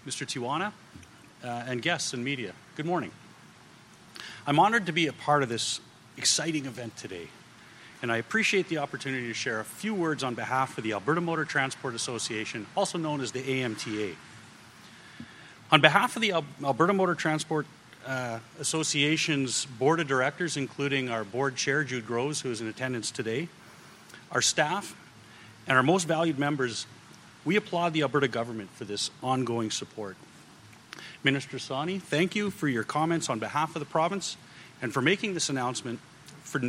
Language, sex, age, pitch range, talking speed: English, male, 40-59, 120-160 Hz, 160 wpm